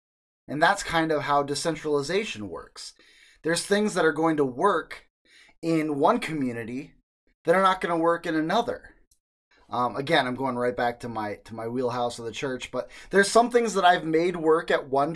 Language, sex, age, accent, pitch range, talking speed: English, male, 20-39, American, 135-210 Hz, 195 wpm